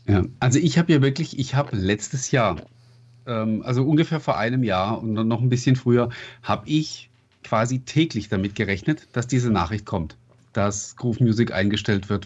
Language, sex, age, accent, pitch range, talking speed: German, male, 40-59, German, 110-135 Hz, 180 wpm